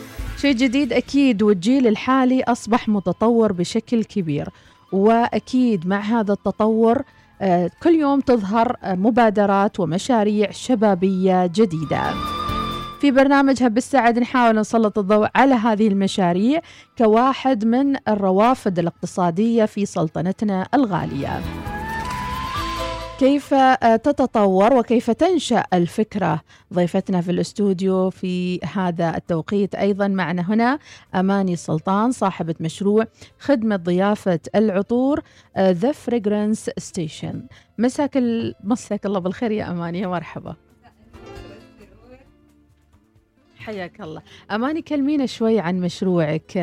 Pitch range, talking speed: 185-240 Hz, 95 wpm